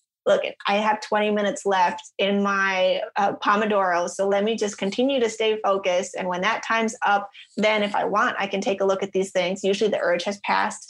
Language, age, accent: English, 20-39, American